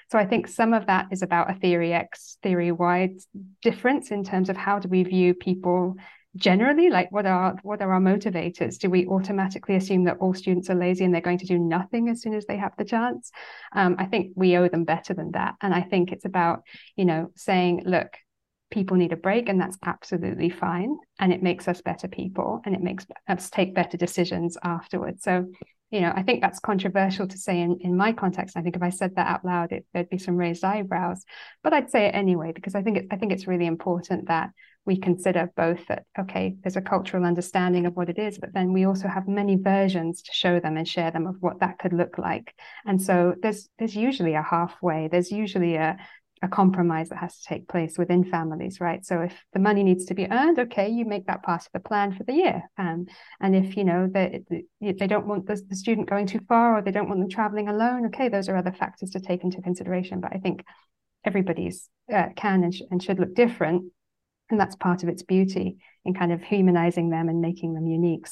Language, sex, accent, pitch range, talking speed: English, female, British, 175-200 Hz, 230 wpm